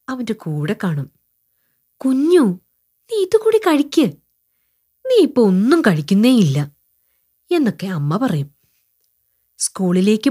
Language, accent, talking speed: Malayalam, native, 85 wpm